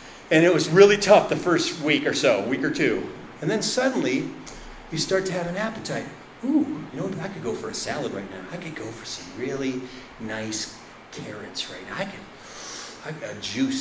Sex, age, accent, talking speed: male, 40-59, American, 215 wpm